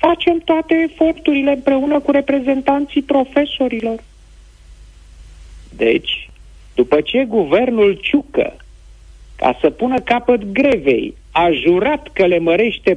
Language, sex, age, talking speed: Romanian, male, 50-69, 100 wpm